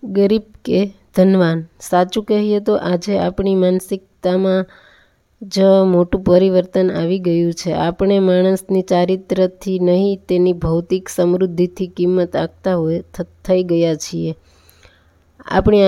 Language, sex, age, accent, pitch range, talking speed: Gujarati, female, 20-39, native, 180-195 Hz, 105 wpm